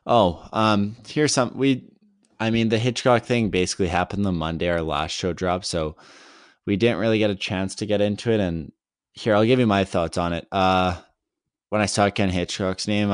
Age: 20-39